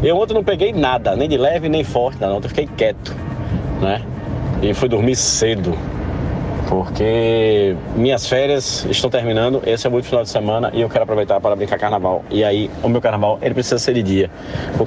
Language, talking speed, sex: Portuguese, 195 wpm, male